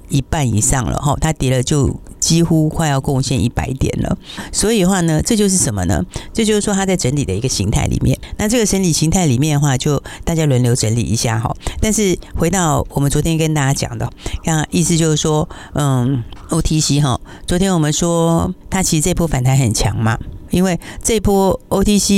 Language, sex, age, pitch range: Chinese, female, 50-69, 125-165 Hz